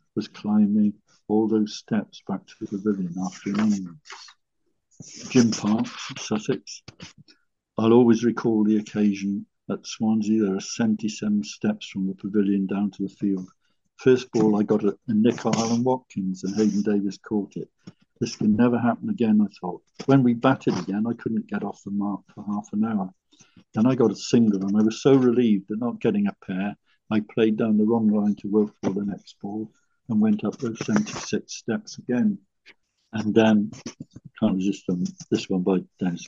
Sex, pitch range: male, 95-115 Hz